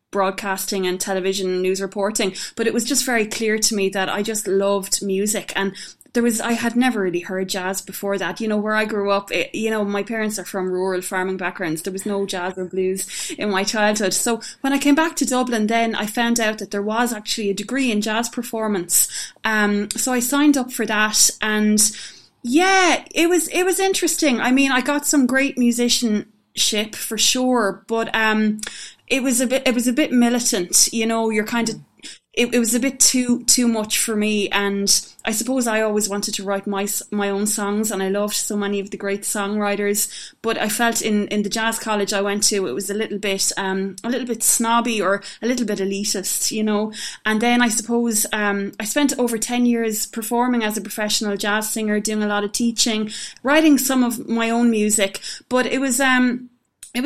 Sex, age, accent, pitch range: female, 20-39, Irish, 200-240 Hz